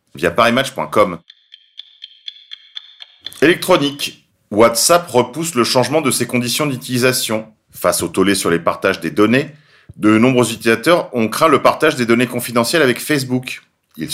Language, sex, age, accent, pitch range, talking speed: French, male, 40-59, French, 105-140 Hz, 135 wpm